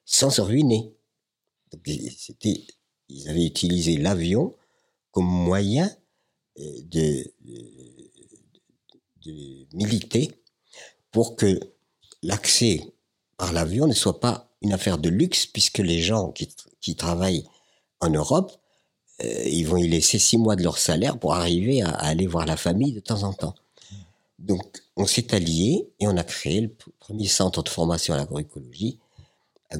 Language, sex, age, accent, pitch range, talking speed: French, male, 50-69, French, 85-110 Hz, 150 wpm